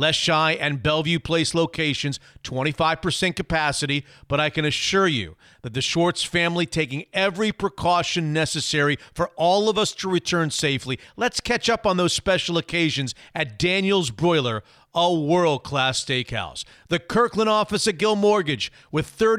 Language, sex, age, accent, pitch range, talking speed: English, male, 40-59, American, 150-195 Hz, 150 wpm